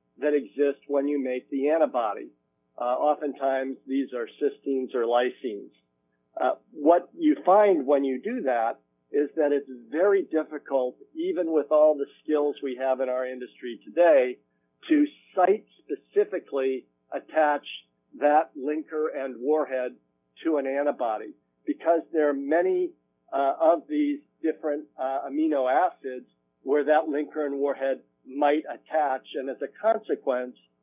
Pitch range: 130-155 Hz